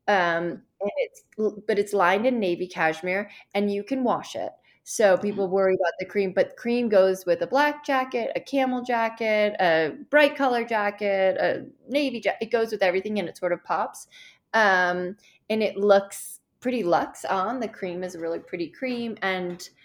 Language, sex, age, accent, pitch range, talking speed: English, female, 20-39, American, 180-215 Hz, 185 wpm